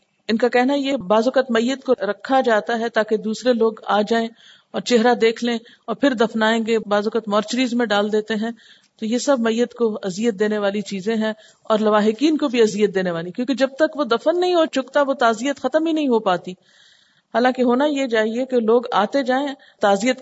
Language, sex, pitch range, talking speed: Urdu, female, 210-255 Hz, 215 wpm